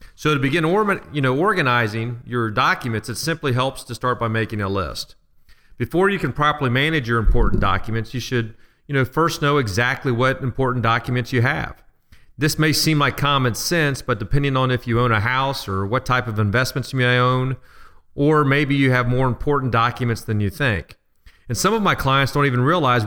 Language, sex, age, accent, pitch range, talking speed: English, male, 40-59, American, 110-135 Hz, 200 wpm